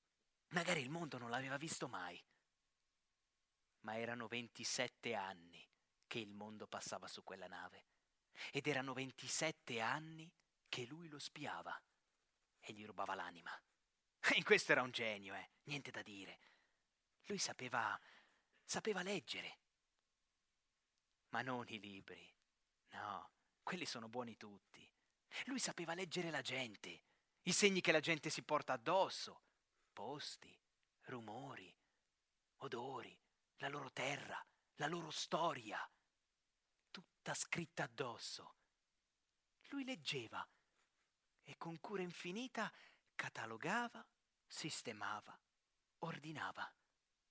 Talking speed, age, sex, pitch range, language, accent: 110 wpm, 30-49, male, 115-170 Hz, Italian, native